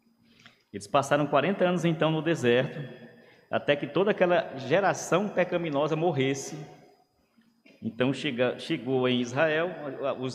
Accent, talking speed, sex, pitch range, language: Brazilian, 115 wpm, male, 135-200 Hz, Portuguese